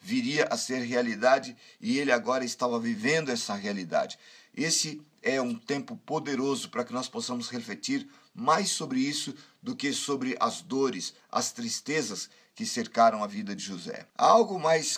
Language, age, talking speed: Portuguese, 50-69, 160 wpm